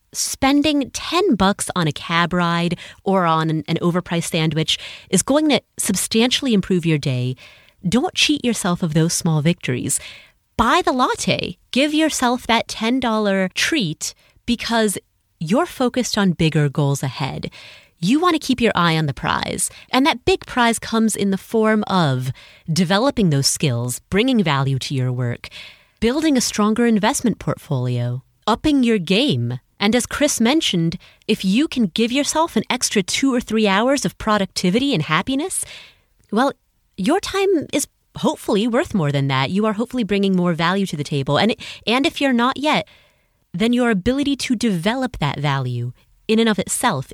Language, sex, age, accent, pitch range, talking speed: English, female, 30-49, American, 155-245 Hz, 165 wpm